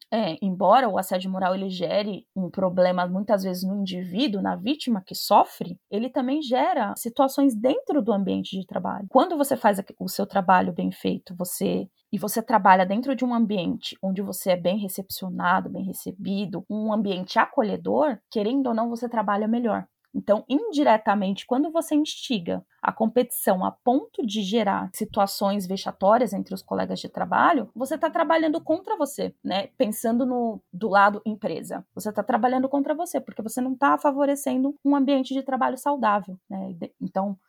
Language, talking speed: Portuguese, 165 wpm